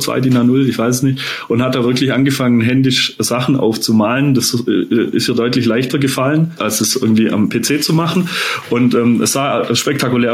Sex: male